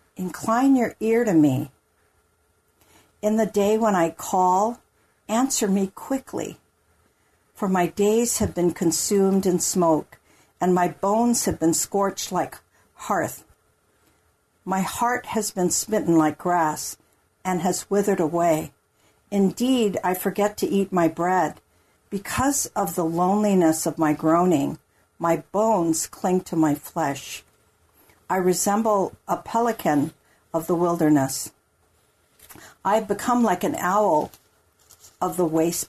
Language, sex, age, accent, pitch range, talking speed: English, female, 60-79, American, 145-195 Hz, 130 wpm